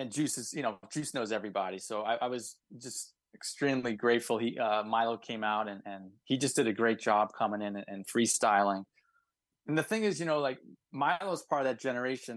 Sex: male